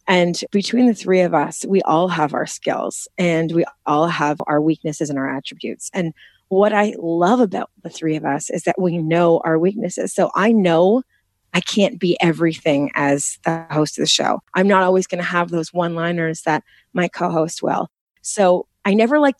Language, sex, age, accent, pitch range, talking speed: English, female, 30-49, American, 160-190 Hz, 200 wpm